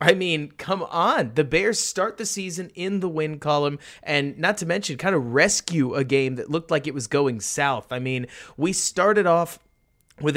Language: English